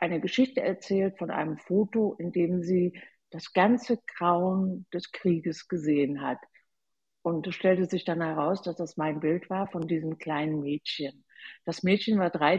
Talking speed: 165 wpm